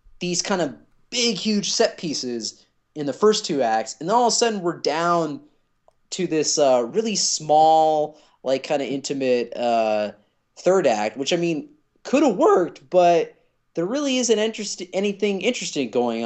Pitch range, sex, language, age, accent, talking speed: 120-185 Hz, male, English, 20-39, American, 165 wpm